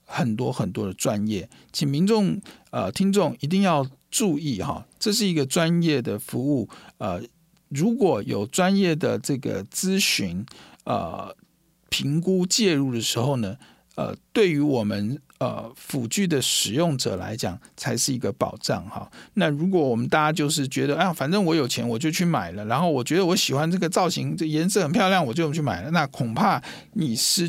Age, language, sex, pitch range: 50-69, Chinese, male, 120-175 Hz